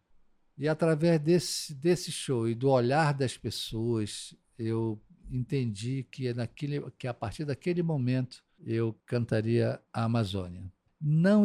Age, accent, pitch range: 50-69, Brazilian, 115-145 Hz